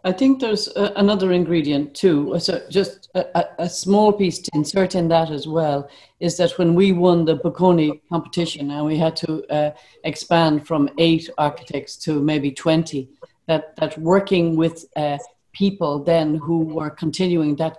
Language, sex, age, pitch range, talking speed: English, female, 60-79, 155-180 Hz, 170 wpm